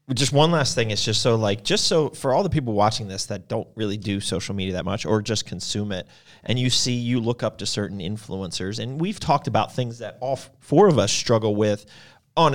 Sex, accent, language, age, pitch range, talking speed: male, American, English, 30-49, 105-130 Hz, 240 wpm